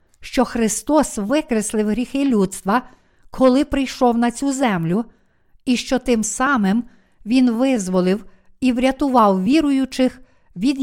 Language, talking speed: Ukrainian, 110 wpm